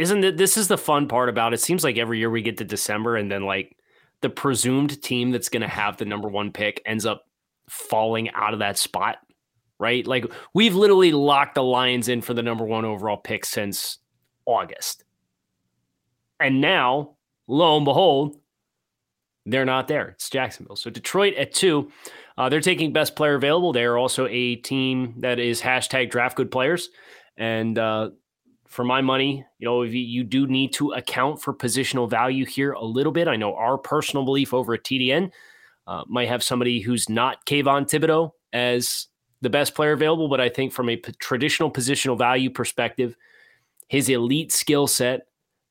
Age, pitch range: 20-39, 115-140 Hz